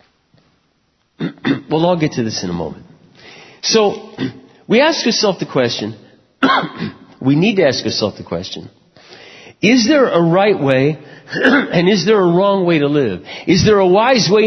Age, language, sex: 50-69, English, male